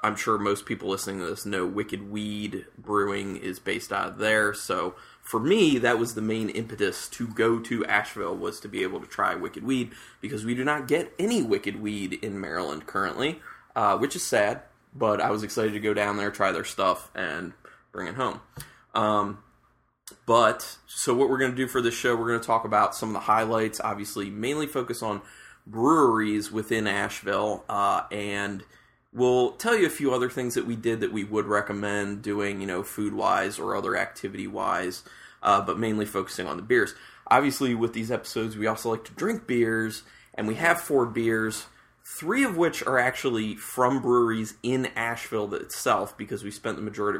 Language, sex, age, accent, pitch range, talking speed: English, male, 20-39, American, 105-115 Hz, 195 wpm